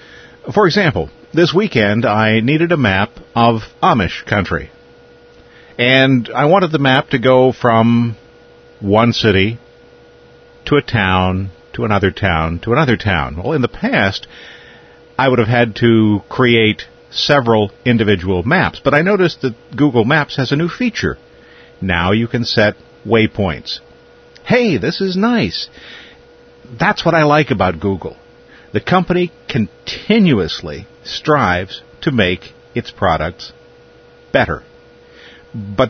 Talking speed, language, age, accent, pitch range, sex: 130 wpm, English, 50-69, American, 100-145 Hz, male